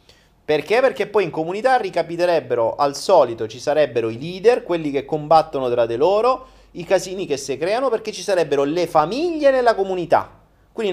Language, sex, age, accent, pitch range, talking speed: Italian, male, 30-49, native, 105-165 Hz, 170 wpm